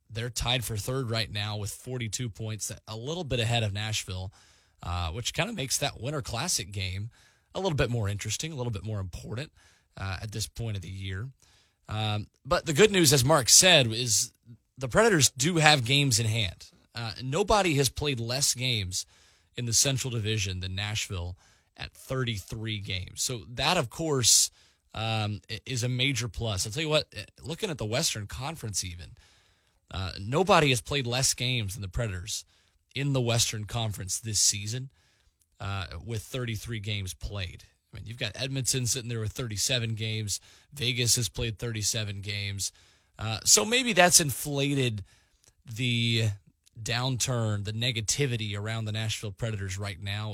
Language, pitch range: English, 100-125 Hz